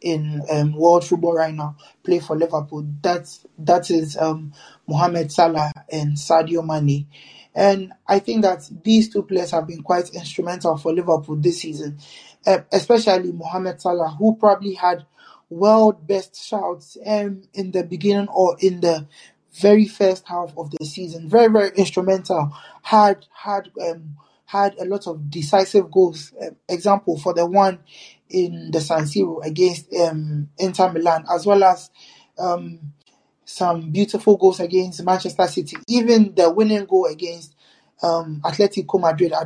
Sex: male